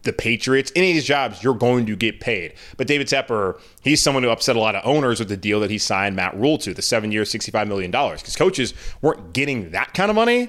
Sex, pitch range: male, 110-145 Hz